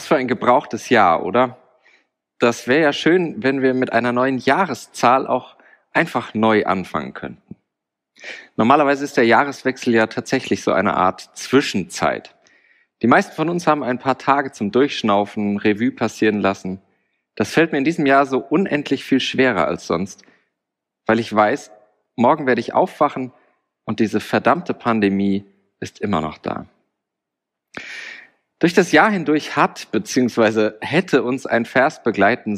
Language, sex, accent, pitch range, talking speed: German, male, German, 110-135 Hz, 150 wpm